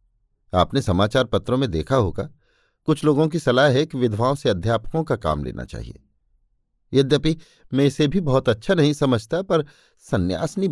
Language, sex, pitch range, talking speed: Hindi, male, 100-140 Hz, 160 wpm